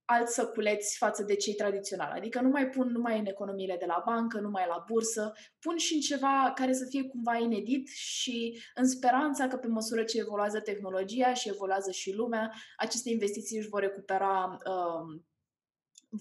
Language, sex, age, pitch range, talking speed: Romanian, female, 20-39, 195-260 Hz, 180 wpm